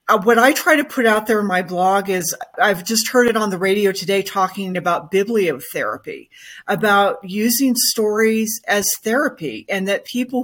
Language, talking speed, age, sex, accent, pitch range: English, 175 wpm, 40-59, female, American, 185-220 Hz